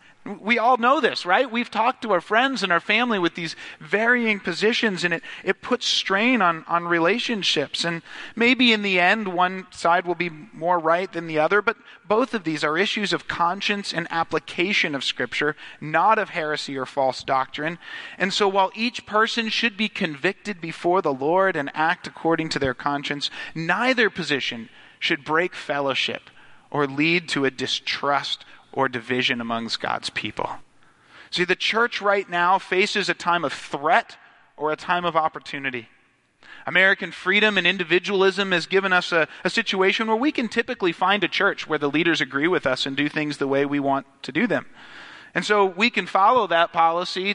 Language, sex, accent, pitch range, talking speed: English, male, American, 155-205 Hz, 180 wpm